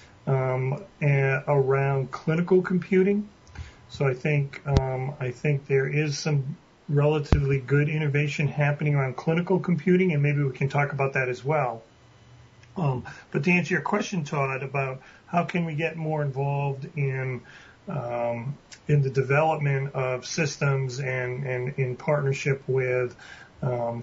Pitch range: 135-160 Hz